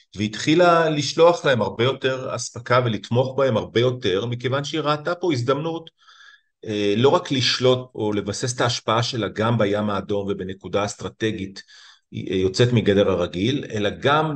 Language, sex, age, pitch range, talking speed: Hebrew, male, 40-59, 105-130 Hz, 140 wpm